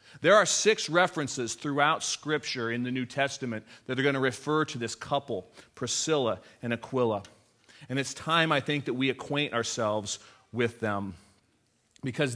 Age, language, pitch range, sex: 40-59, English, 115-150 Hz, male